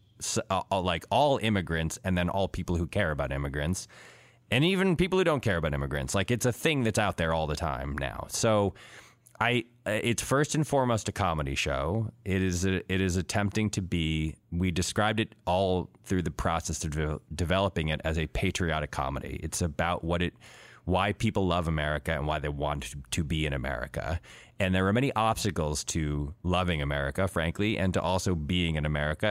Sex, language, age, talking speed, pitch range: male, English, 20-39, 190 wpm, 80-105 Hz